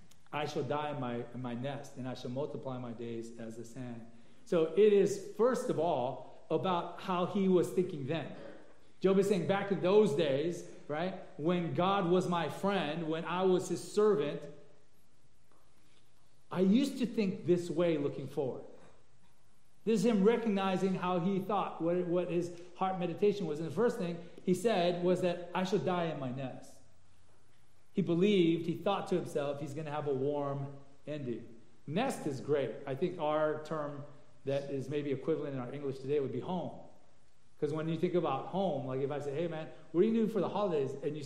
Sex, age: male, 40-59